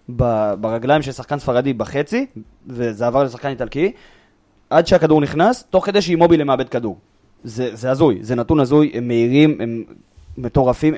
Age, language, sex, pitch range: 20-39, Hebrew, male, 115-150 Hz